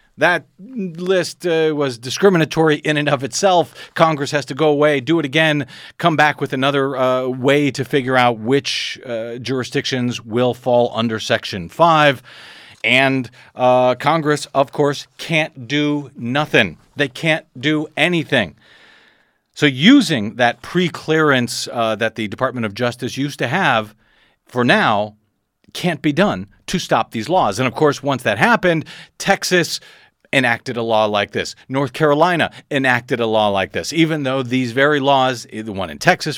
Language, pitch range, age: English, 120-155 Hz, 40-59